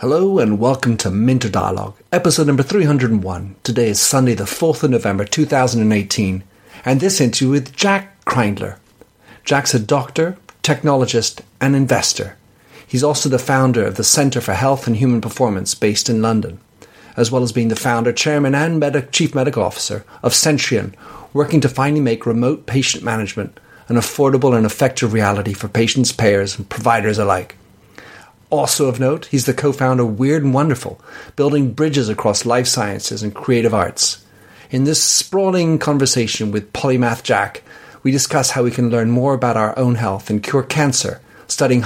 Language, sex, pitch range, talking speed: English, male, 110-135 Hz, 165 wpm